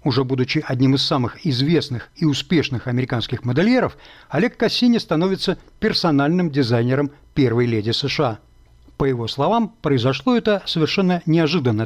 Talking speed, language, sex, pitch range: 125 wpm, Russian, male, 120-175 Hz